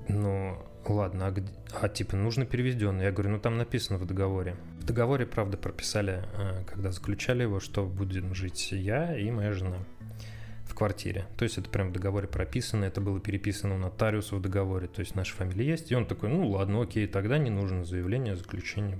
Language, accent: Russian, native